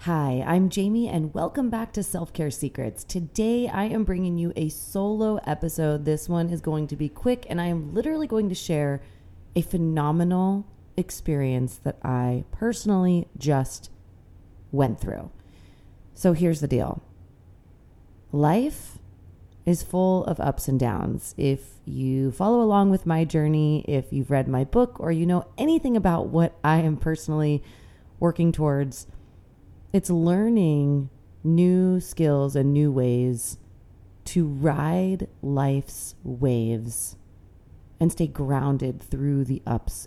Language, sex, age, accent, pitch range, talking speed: English, female, 30-49, American, 125-170 Hz, 135 wpm